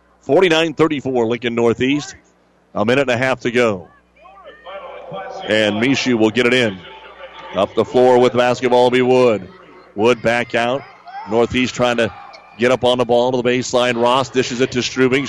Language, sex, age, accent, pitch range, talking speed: English, male, 40-59, American, 125-140 Hz, 175 wpm